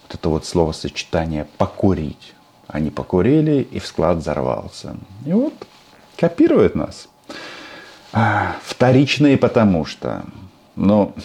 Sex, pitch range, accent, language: male, 80-115 Hz, native, Russian